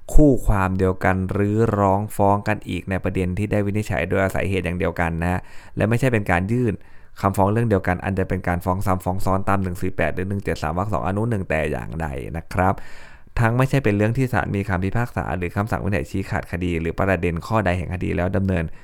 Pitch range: 90-100 Hz